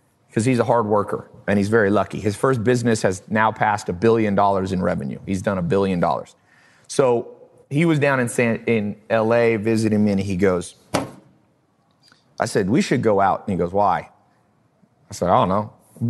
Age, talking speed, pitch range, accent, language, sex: 30-49, 200 wpm, 100-130 Hz, American, English, male